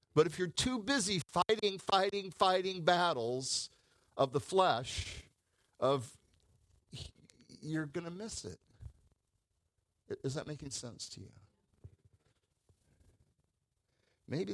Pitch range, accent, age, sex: 90-120 Hz, American, 50-69, male